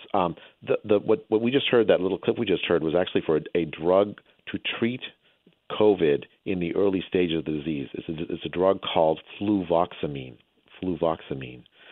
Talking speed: 190 wpm